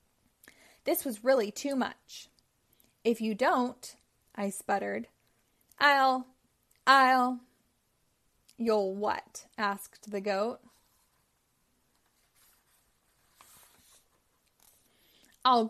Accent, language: American, English